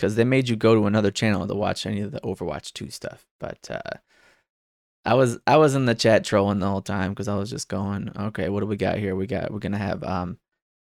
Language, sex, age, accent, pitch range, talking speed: English, male, 20-39, American, 105-135 Hz, 260 wpm